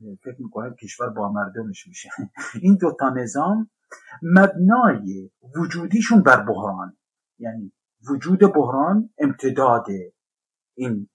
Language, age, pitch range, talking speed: Persian, 50-69, 125-210 Hz, 100 wpm